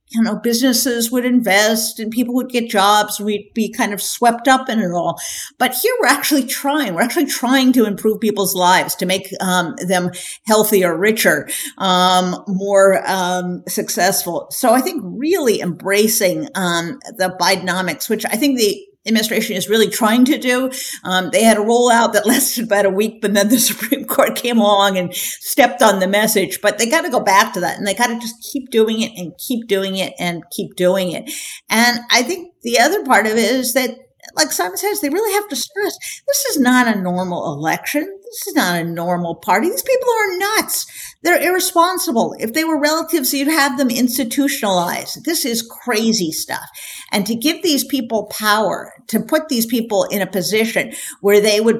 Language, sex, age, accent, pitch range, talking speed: English, female, 50-69, American, 195-275 Hz, 195 wpm